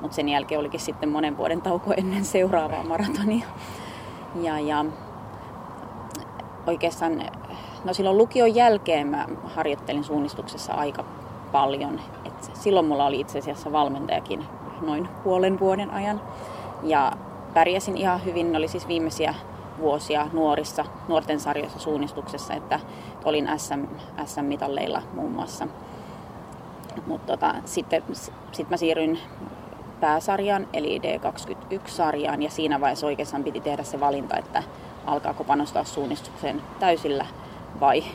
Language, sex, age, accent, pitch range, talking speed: Finnish, female, 30-49, native, 150-175 Hz, 120 wpm